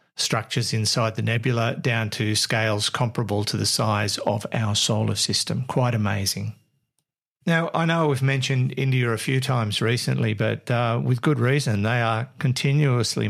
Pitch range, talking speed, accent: 110-135 Hz, 160 wpm, Australian